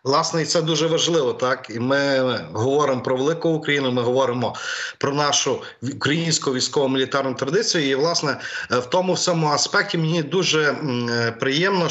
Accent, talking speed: native, 135 wpm